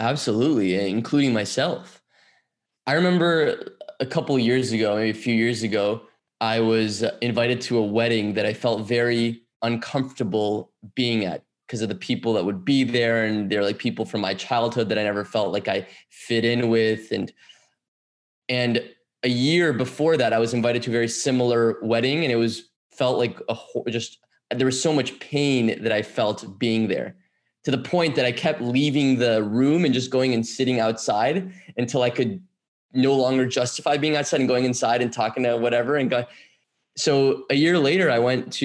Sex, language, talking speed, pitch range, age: male, English, 190 wpm, 115-140 Hz, 20-39